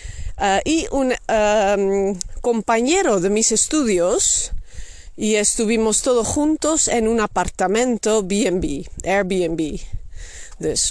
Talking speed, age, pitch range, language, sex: 105 wpm, 30-49, 175-230 Hz, Dutch, female